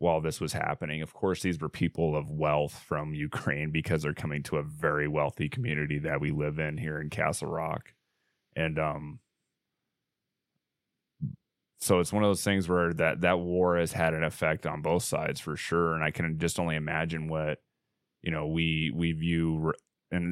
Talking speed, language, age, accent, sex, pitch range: 185 wpm, English, 20-39, American, male, 75-85 Hz